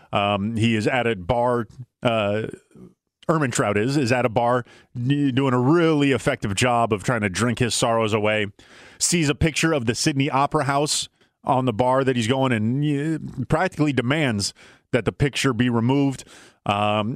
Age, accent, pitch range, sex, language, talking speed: 30-49, American, 120-140 Hz, male, English, 170 wpm